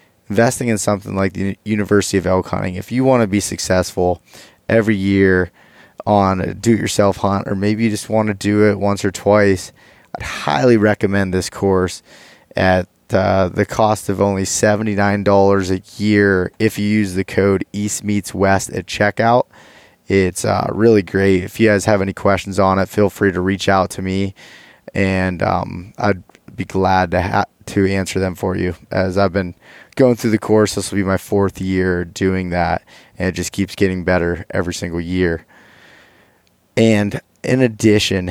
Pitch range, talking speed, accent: 95-105 Hz, 180 wpm, American